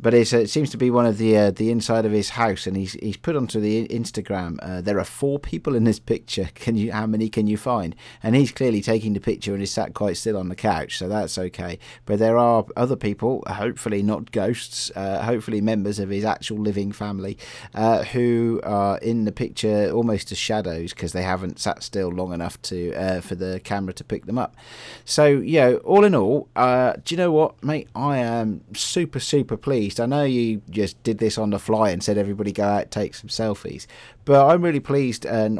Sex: male